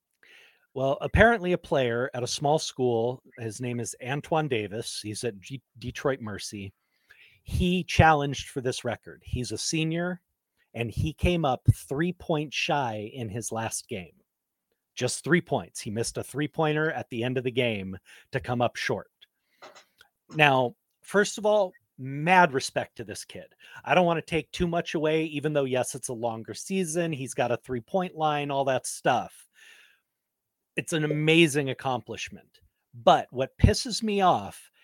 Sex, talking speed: male, 160 wpm